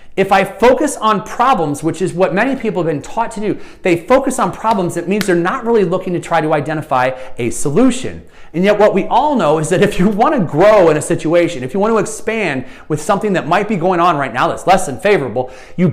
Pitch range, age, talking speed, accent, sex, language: 160-225 Hz, 30-49, 250 wpm, American, male, English